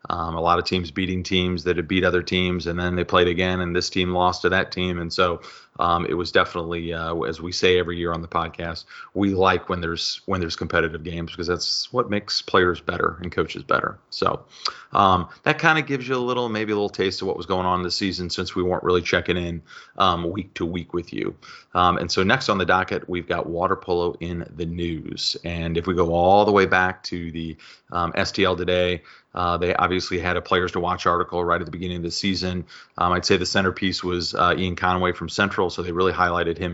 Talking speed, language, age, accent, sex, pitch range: 240 wpm, English, 30-49, American, male, 85-95 Hz